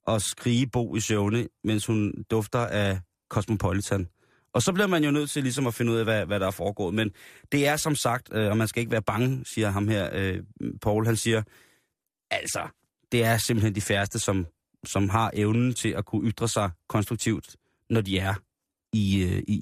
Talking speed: 200 wpm